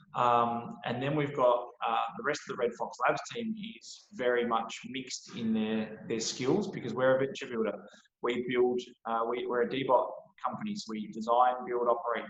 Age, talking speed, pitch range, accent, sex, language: 20-39, 195 wpm, 115-185 Hz, Australian, male, English